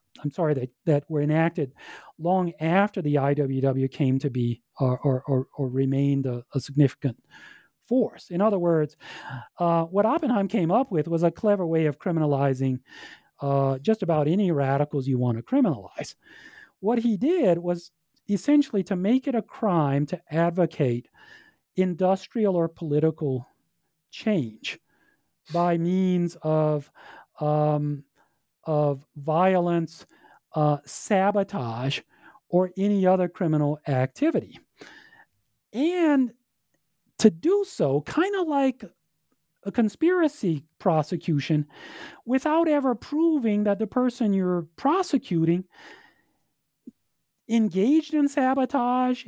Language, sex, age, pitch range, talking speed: English, male, 40-59, 150-230 Hz, 115 wpm